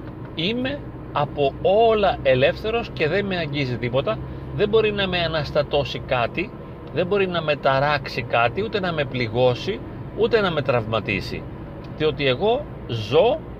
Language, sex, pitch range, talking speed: Greek, male, 120-175 Hz, 140 wpm